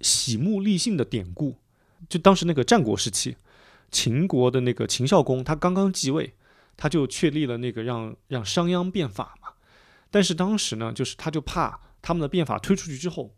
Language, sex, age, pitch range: Chinese, male, 20-39, 120-165 Hz